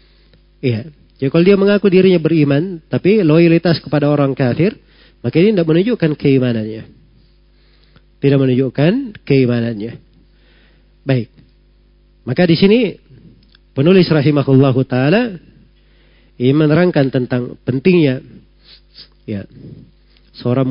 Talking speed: 95 wpm